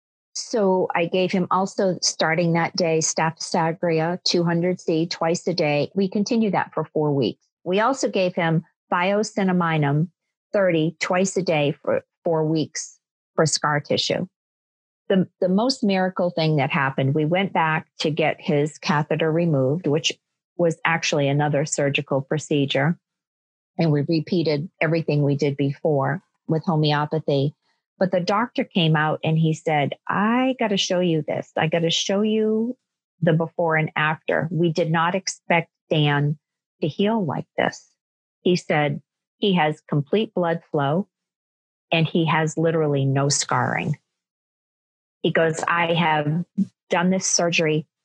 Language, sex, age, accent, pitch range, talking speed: English, female, 40-59, American, 150-185 Hz, 145 wpm